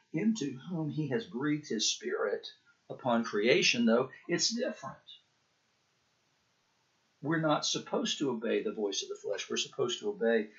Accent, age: American, 50-69